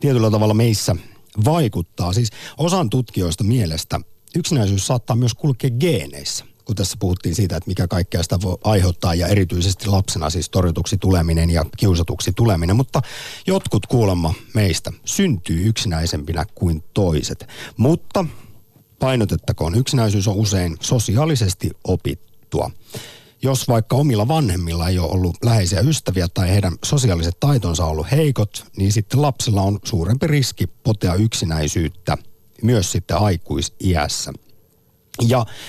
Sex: male